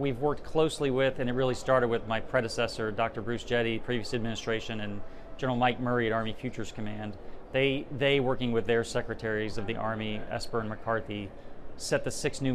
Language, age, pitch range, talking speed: English, 40-59, 110-130 Hz, 190 wpm